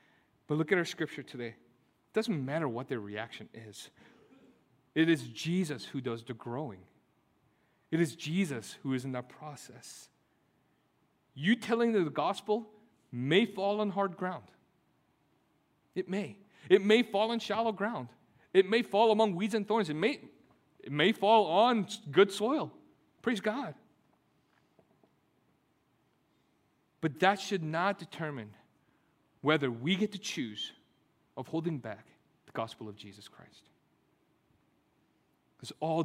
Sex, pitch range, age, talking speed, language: male, 115-195 Hz, 40-59, 135 wpm, English